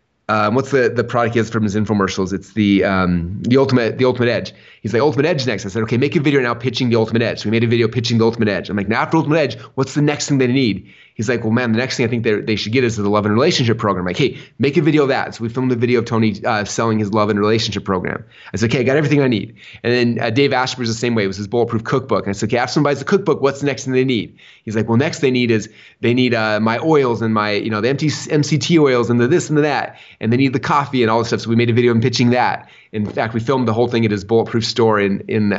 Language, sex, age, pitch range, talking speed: English, male, 30-49, 105-125 Hz, 320 wpm